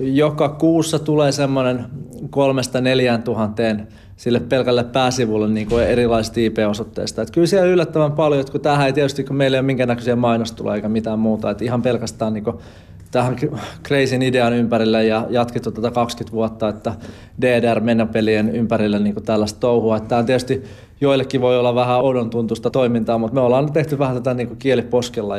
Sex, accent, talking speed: male, native, 165 wpm